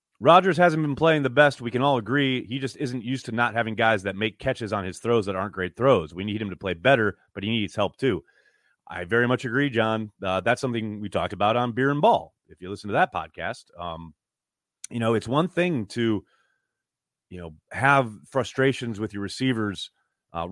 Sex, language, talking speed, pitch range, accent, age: male, English, 220 wpm, 100-140 Hz, American, 30-49